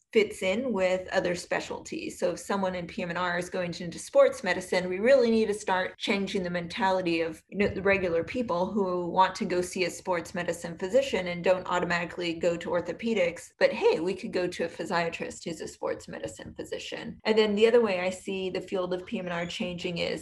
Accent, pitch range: American, 175-205 Hz